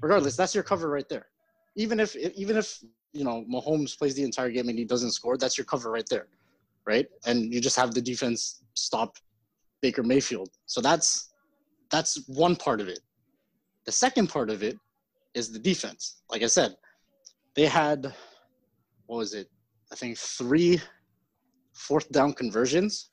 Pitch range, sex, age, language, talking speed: 125-175 Hz, male, 20-39, English, 170 wpm